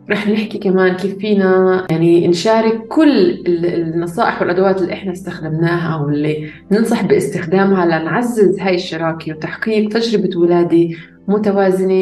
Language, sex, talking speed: Arabic, female, 115 wpm